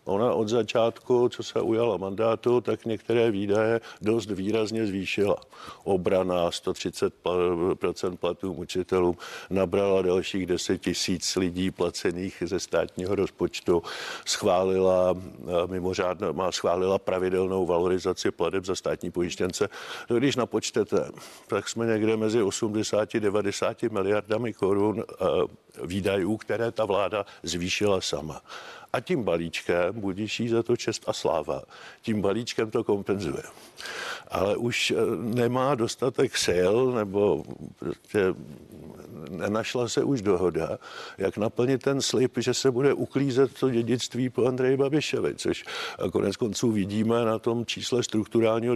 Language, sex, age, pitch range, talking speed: Czech, male, 50-69, 95-115 Hz, 115 wpm